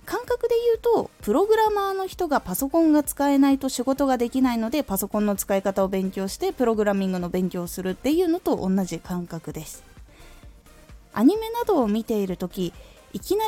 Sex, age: female, 20-39